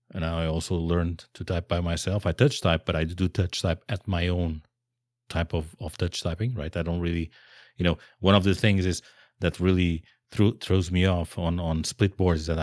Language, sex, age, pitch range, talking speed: English, male, 40-59, 85-105 Hz, 225 wpm